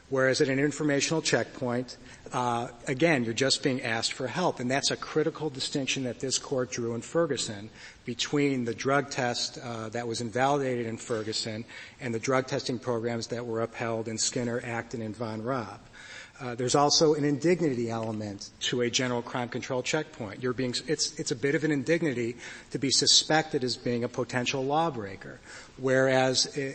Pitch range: 120-145 Hz